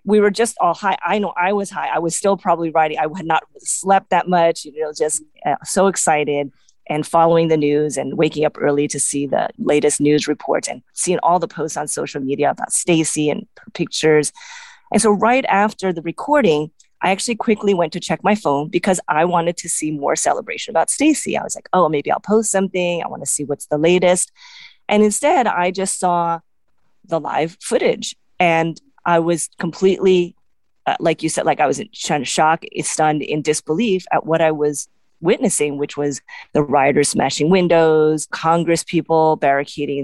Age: 30-49